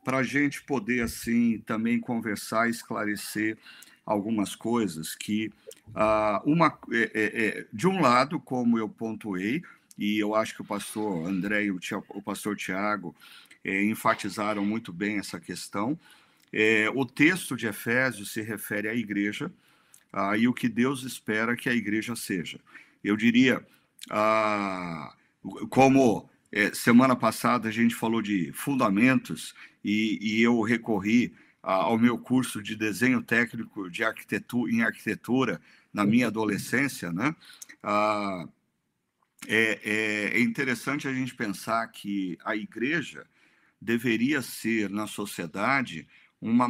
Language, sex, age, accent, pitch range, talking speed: Portuguese, male, 50-69, Brazilian, 105-120 Hz, 125 wpm